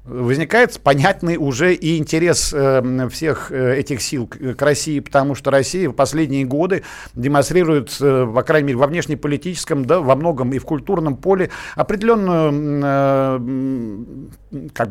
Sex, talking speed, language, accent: male, 120 wpm, Russian, native